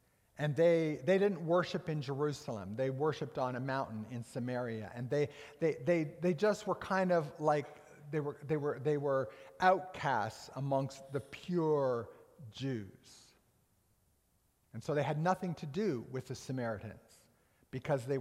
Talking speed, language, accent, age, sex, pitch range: 155 wpm, English, American, 50-69, male, 135-190 Hz